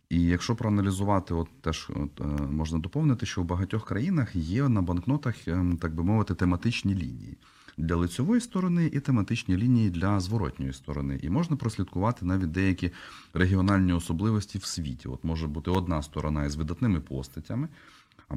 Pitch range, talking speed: 75-105 Hz, 155 wpm